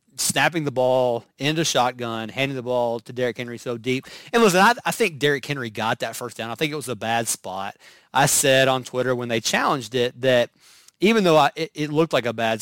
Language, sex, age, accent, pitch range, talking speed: English, male, 30-49, American, 120-145 Hz, 230 wpm